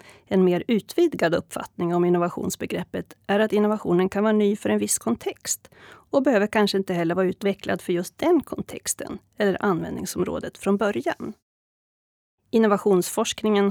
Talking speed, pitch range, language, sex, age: 140 wpm, 180-230 Hz, Swedish, female, 30-49